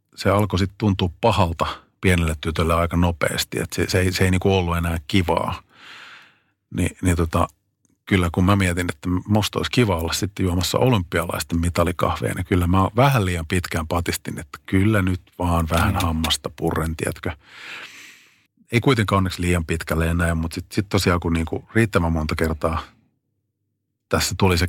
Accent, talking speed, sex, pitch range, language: native, 165 wpm, male, 85-105 Hz, Finnish